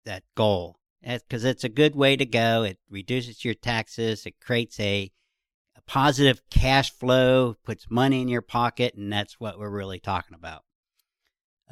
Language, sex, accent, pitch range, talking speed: English, male, American, 100-125 Hz, 170 wpm